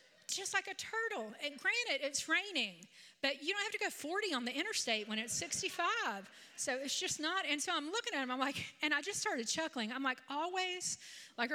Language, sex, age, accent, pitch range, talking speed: English, female, 40-59, American, 225-300 Hz, 220 wpm